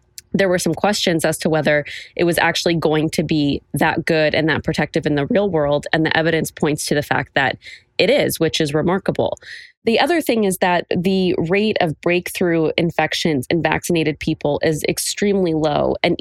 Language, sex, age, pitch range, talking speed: English, female, 20-39, 150-180 Hz, 190 wpm